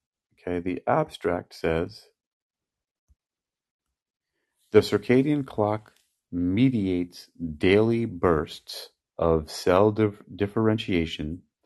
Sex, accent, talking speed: male, American, 70 wpm